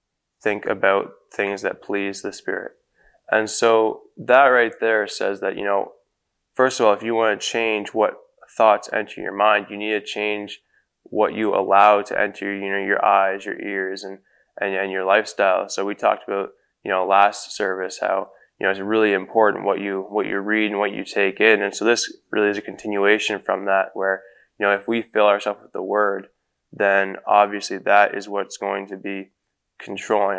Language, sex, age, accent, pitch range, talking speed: English, male, 10-29, American, 95-110 Hz, 200 wpm